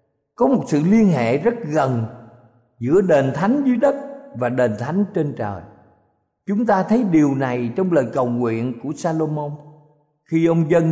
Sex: male